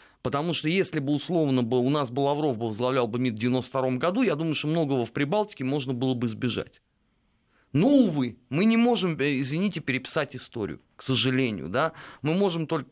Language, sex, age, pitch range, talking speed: Russian, male, 30-49, 125-170 Hz, 185 wpm